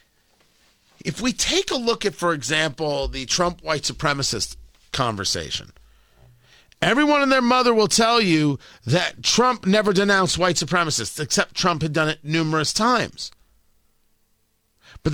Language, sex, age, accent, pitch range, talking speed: English, male, 50-69, American, 150-215 Hz, 135 wpm